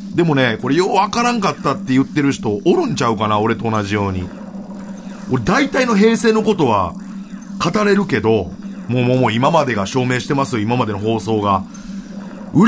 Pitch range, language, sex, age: 160-205 Hz, Japanese, male, 30-49